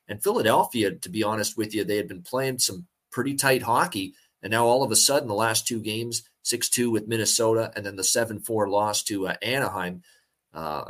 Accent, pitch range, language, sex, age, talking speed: American, 105-120 Hz, English, male, 30-49, 205 wpm